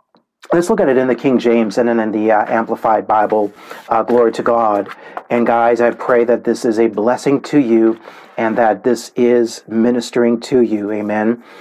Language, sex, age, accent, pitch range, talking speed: English, male, 40-59, American, 115-125 Hz, 195 wpm